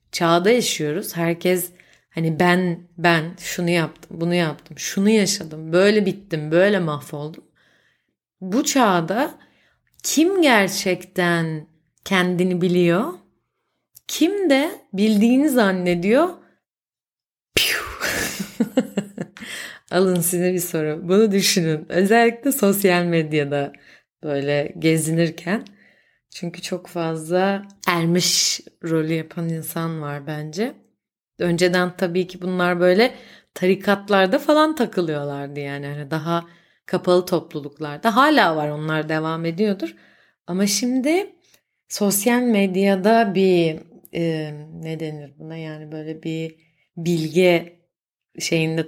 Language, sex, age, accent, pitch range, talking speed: Turkish, female, 30-49, native, 160-200 Hz, 95 wpm